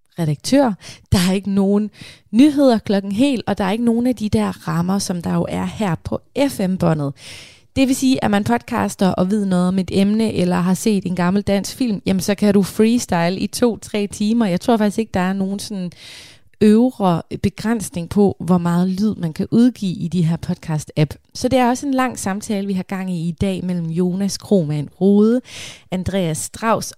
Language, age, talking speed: Danish, 20-39, 200 wpm